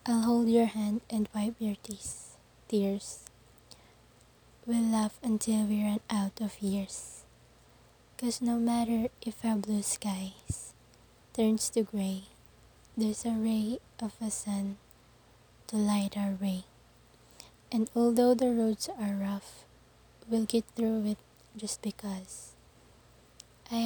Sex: female